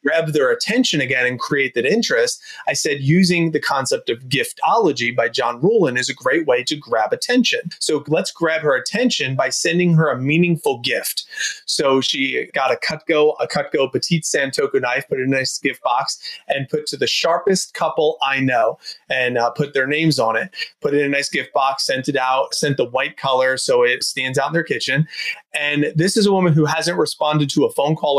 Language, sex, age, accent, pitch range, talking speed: English, male, 30-49, American, 140-215 Hz, 215 wpm